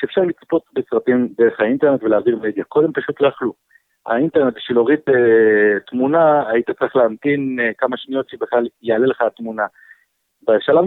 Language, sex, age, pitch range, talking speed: Hebrew, male, 50-69, 110-155 Hz, 150 wpm